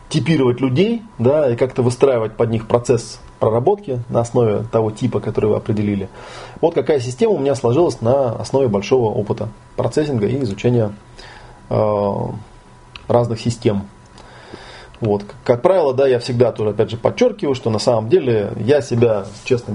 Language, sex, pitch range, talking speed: Russian, male, 110-130 Hz, 150 wpm